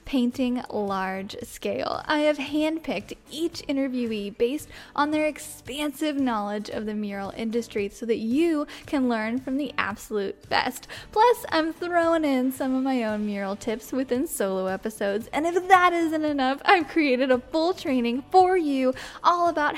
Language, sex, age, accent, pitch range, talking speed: English, female, 10-29, American, 240-300 Hz, 160 wpm